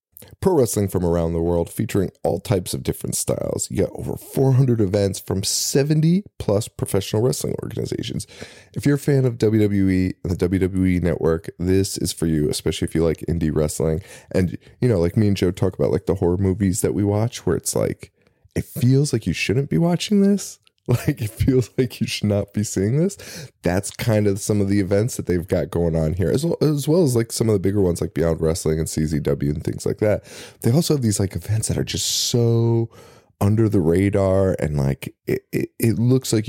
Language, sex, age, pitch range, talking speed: English, male, 20-39, 90-125 Hz, 215 wpm